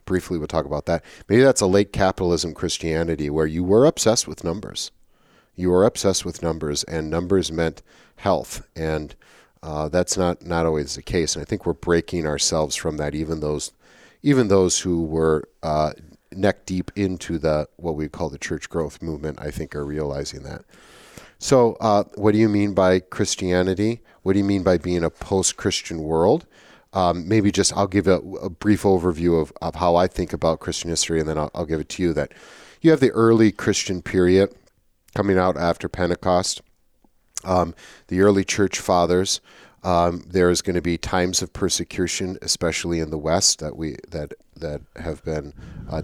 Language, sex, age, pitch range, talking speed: English, male, 40-59, 80-95 Hz, 185 wpm